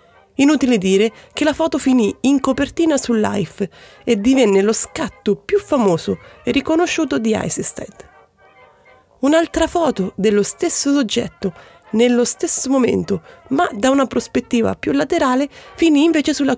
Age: 30-49